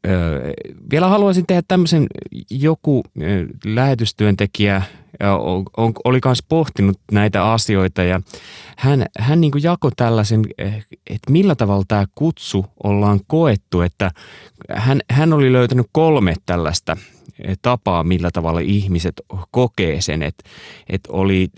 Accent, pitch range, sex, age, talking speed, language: native, 90-125 Hz, male, 30-49, 110 wpm, Finnish